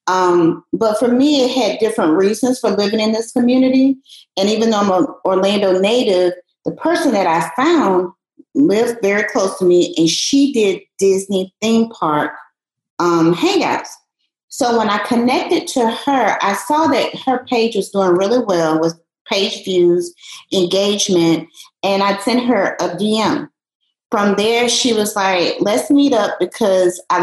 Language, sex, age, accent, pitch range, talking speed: English, female, 40-59, American, 175-250 Hz, 160 wpm